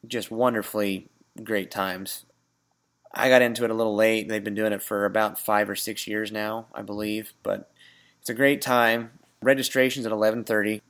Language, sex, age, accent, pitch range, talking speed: English, male, 20-39, American, 105-115 Hz, 180 wpm